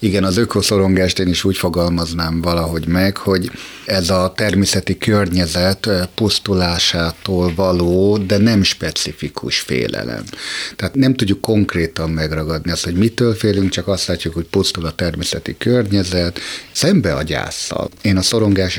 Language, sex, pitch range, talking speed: Hungarian, male, 85-105 Hz, 135 wpm